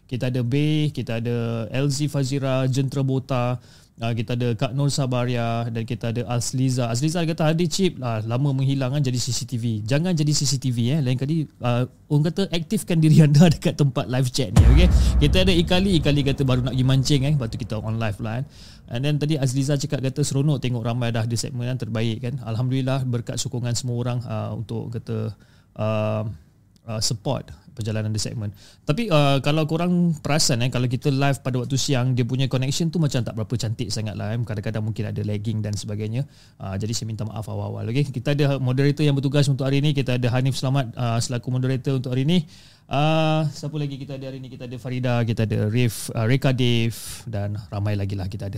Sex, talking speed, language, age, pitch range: male, 210 wpm, Malay, 20-39, 115-140 Hz